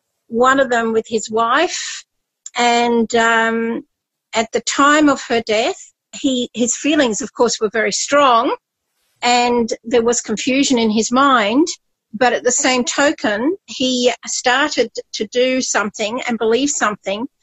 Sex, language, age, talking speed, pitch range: female, English, 50-69, 145 wpm, 225-275 Hz